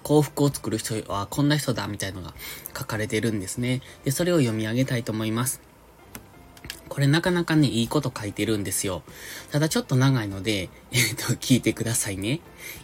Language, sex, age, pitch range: Japanese, male, 20-39, 105-140 Hz